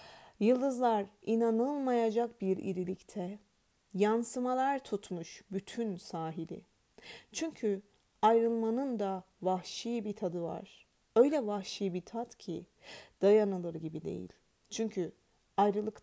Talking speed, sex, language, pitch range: 95 wpm, female, Turkish, 190-235 Hz